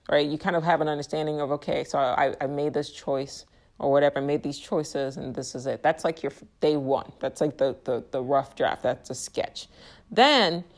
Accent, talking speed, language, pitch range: American, 230 wpm, English, 145-180 Hz